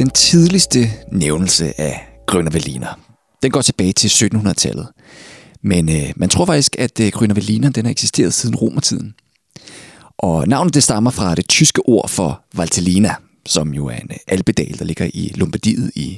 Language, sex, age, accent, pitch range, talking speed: Danish, male, 30-49, native, 90-130 Hz, 160 wpm